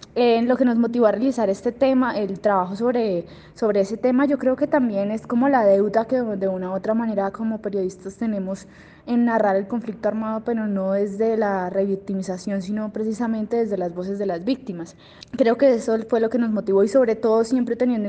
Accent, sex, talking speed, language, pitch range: Colombian, female, 210 wpm, Spanish, 195-240 Hz